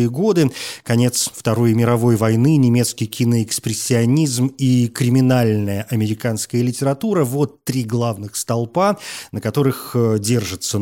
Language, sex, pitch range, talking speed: Russian, male, 110-140 Hz, 100 wpm